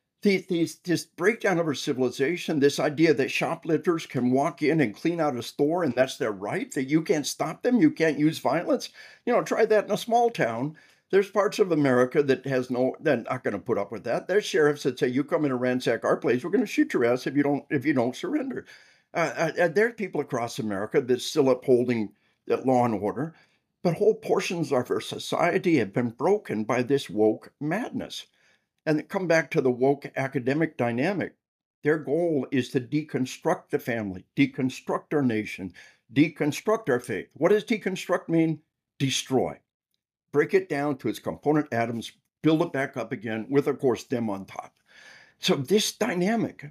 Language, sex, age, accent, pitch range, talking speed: English, male, 60-79, American, 130-170 Hz, 195 wpm